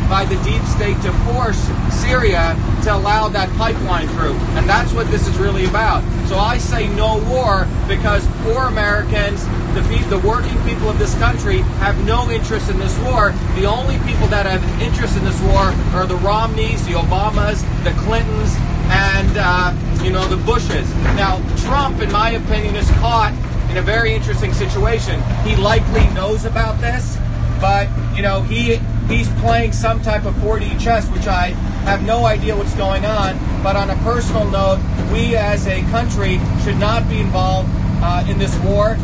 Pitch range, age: 95-115 Hz, 40-59